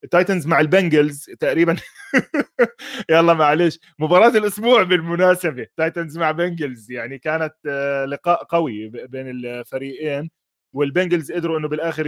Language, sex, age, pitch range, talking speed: Arabic, male, 20-39, 125-160 Hz, 110 wpm